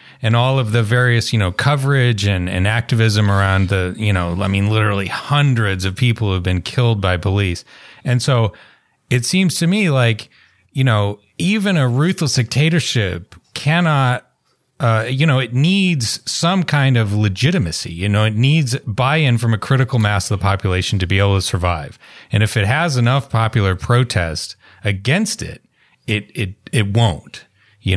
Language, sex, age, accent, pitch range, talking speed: English, male, 30-49, American, 100-130 Hz, 175 wpm